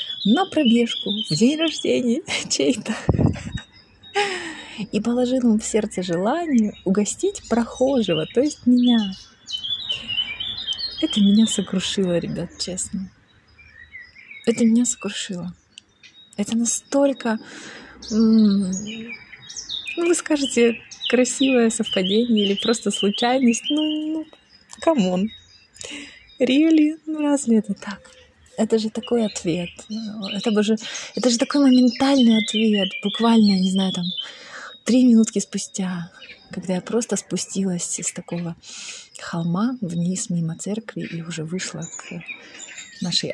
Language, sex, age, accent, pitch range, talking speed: Ukrainian, female, 20-39, native, 180-245 Hz, 105 wpm